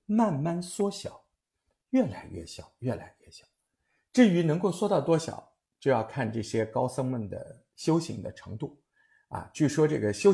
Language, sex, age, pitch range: Chinese, male, 50-69, 110-165 Hz